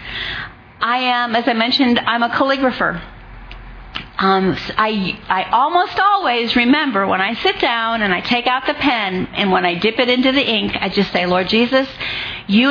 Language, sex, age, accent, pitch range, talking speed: English, female, 40-59, American, 200-265 Hz, 180 wpm